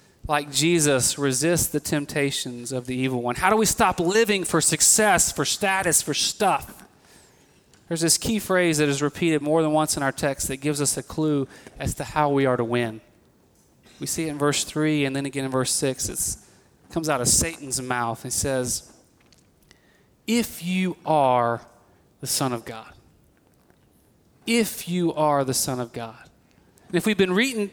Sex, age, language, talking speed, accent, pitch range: male, 30-49, English, 180 wpm, American, 140-195 Hz